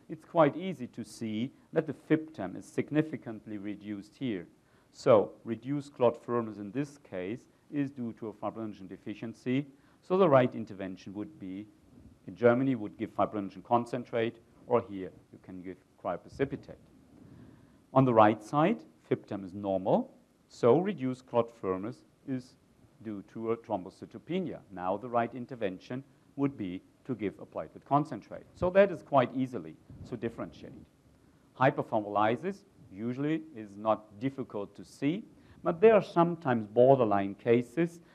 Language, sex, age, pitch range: English, male, 50-69, 105-140 Hz